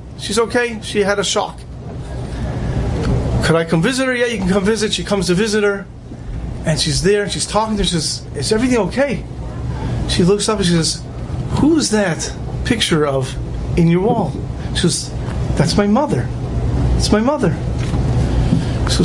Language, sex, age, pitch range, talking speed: English, male, 30-49, 170-215 Hz, 175 wpm